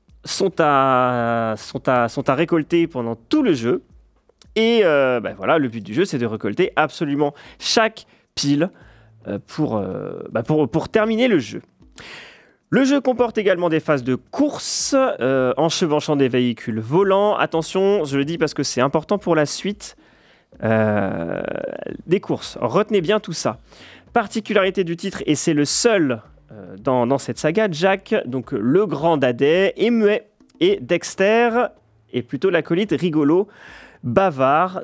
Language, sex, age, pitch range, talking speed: French, male, 30-49, 130-190 Hz, 155 wpm